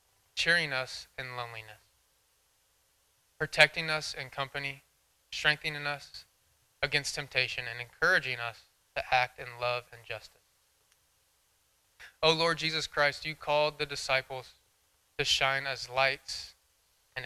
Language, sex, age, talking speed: English, male, 20-39, 120 wpm